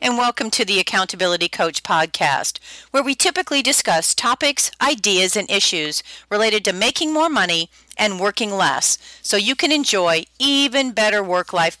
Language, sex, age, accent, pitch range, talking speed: English, female, 40-59, American, 185-250 Hz, 155 wpm